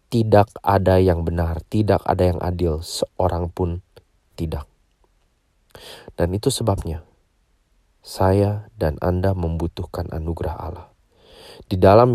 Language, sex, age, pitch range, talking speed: English, male, 30-49, 90-110 Hz, 110 wpm